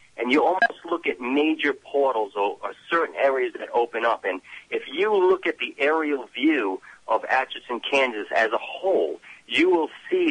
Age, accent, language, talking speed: 40-59, American, English, 175 wpm